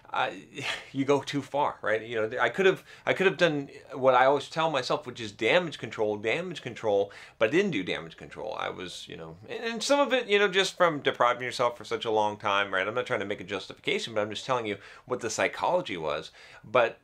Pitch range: 105-145 Hz